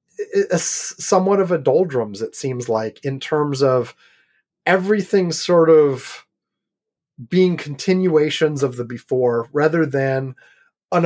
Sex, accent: male, American